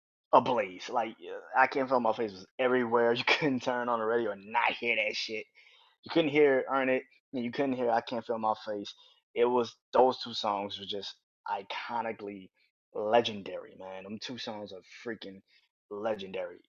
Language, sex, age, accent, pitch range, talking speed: English, male, 20-39, American, 100-130 Hz, 190 wpm